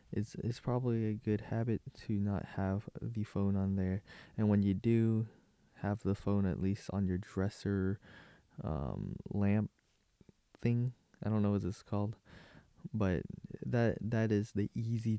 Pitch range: 95-115 Hz